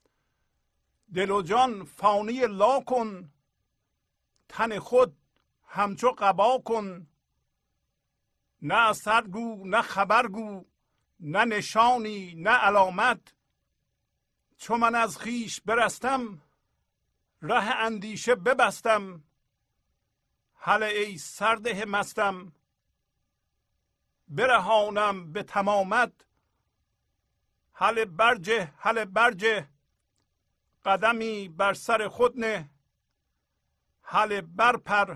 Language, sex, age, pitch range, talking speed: Persian, male, 50-69, 180-225 Hz, 75 wpm